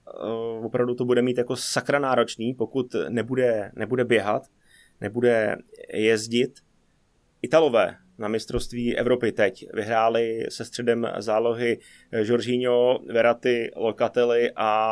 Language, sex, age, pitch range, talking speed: Czech, male, 20-39, 115-125 Hz, 100 wpm